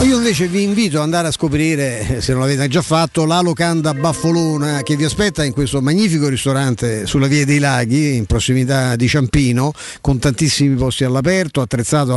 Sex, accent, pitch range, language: male, native, 125-160 Hz, Italian